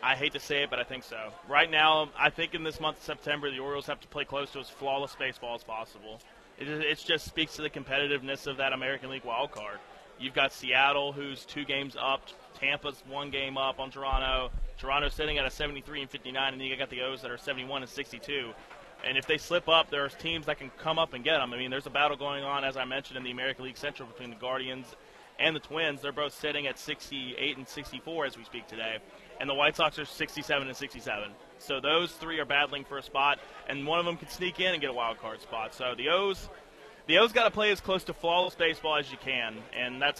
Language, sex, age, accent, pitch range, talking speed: English, male, 20-39, American, 135-150 Hz, 250 wpm